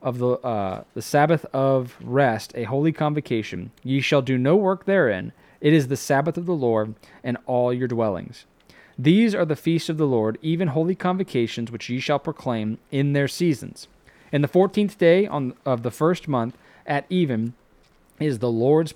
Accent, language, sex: American, English, male